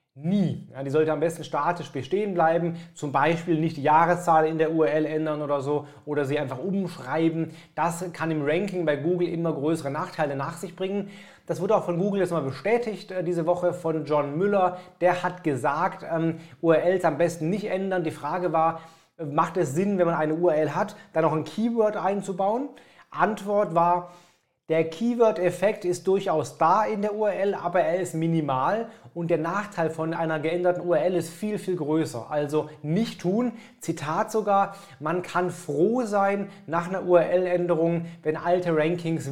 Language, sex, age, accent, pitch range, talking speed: German, male, 30-49, German, 160-185 Hz, 175 wpm